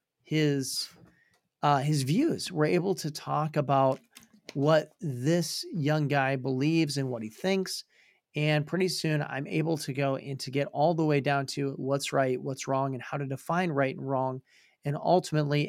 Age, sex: 40-59, male